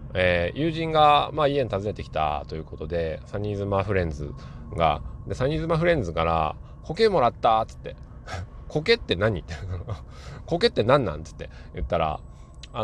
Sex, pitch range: male, 80-120 Hz